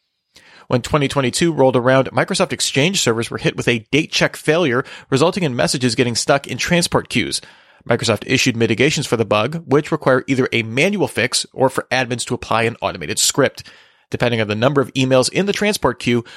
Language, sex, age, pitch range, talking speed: English, male, 30-49, 120-150 Hz, 190 wpm